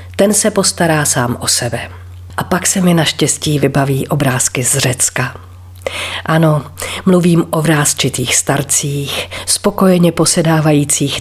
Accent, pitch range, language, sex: native, 125-180 Hz, Czech, female